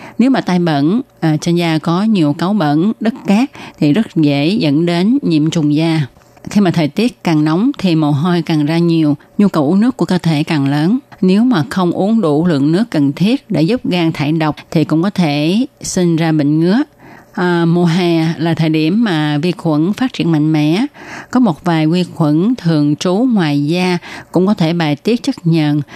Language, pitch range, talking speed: Vietnamese, 155-195 Hz, 215 wpm